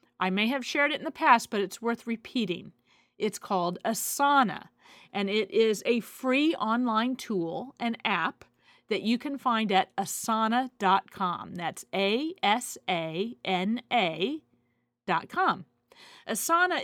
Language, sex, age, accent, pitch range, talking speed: English, female, 40-59, American, 195-270 Hz, 125 wpm